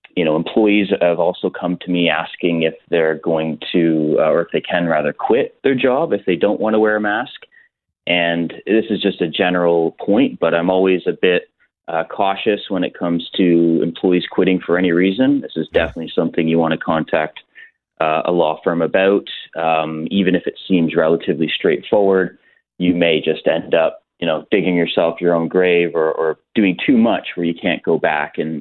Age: 30-49